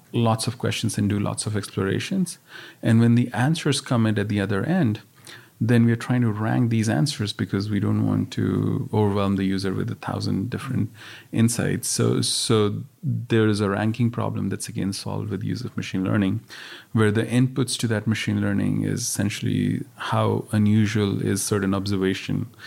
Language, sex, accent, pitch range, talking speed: English, male, Indian, 100-120 Hz, 175 wpm